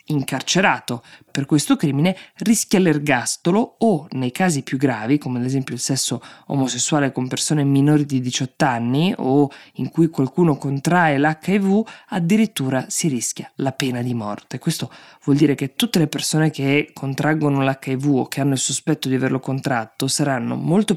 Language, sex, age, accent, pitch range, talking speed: Italian, female, 20-39, native, 130-155 Hz, 160 wpm